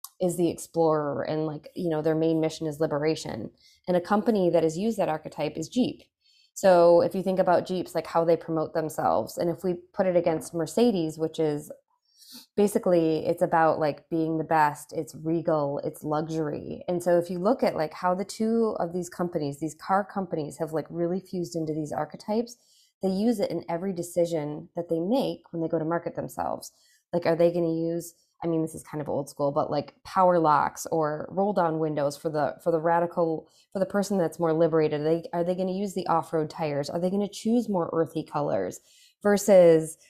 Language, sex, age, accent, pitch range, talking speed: English, female, 20-39, American, 160-185 Hz, 215 wpm